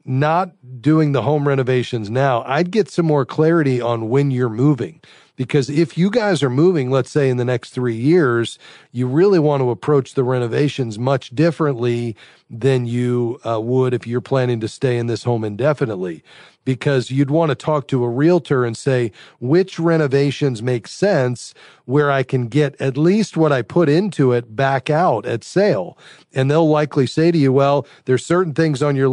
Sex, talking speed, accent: male, 185 wpm, American